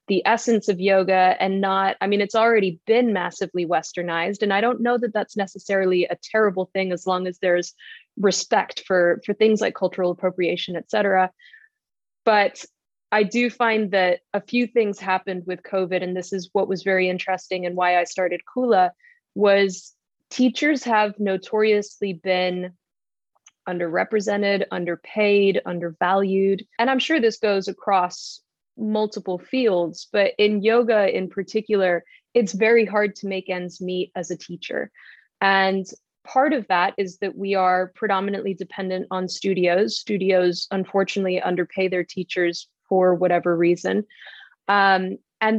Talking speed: 145 wpm